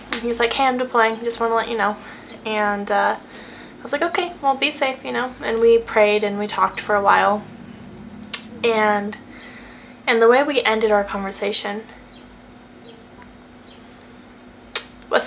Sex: female